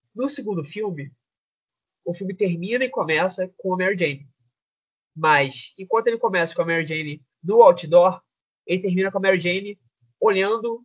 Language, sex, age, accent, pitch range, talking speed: Portuguese, male, 20-39, Brazilian, 150-225 Hz, 160 wpm